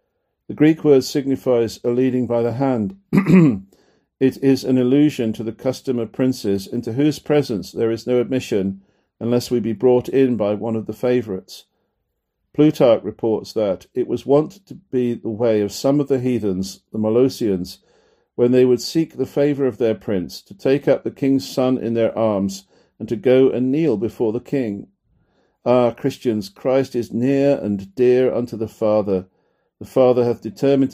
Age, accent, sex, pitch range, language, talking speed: 50-69, British, male, 110-135 Hz, English, 180 wpm